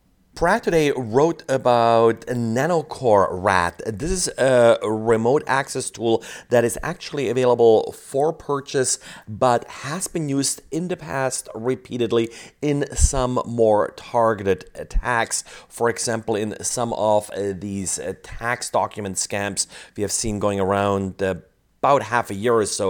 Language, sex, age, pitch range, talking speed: English, male, 30-49, 105-130 Hz, 135 wpm